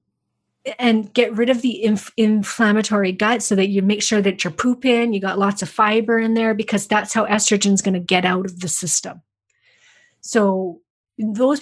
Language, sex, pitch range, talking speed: English, female, 195-245 Hz, 185 wpm